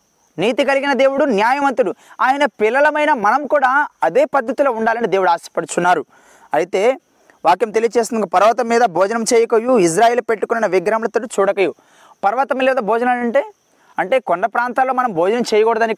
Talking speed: 130 wpm